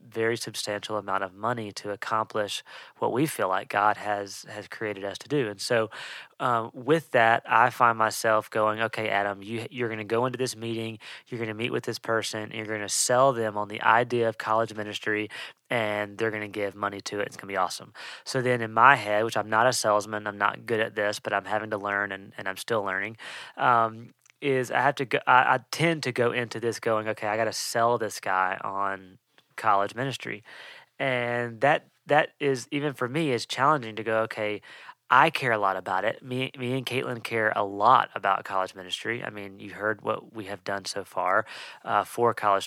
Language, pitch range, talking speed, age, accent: English, 105-120 Hz, 225 wpm, 30-49, American